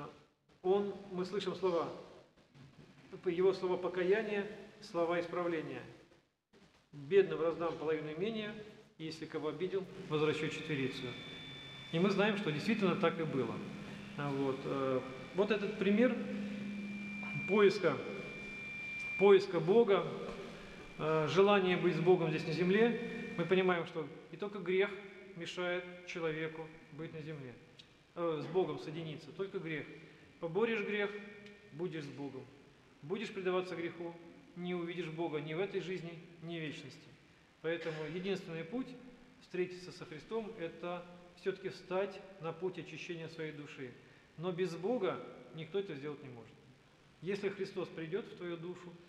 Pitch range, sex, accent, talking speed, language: 155-195 Hz, male, native, 130 wpm, Russian